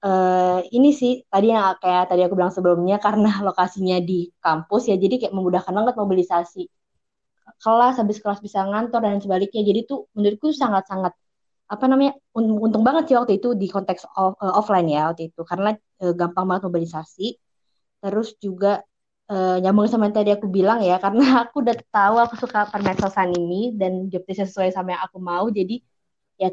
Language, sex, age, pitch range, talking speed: Indonesian, female, 20-39, 180-215 Hz, 175 wpm